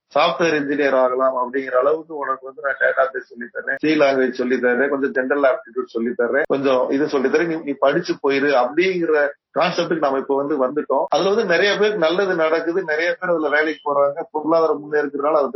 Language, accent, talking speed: Tamil, native, 175 wpm